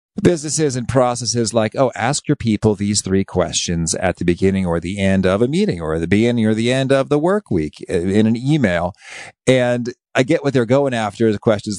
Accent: American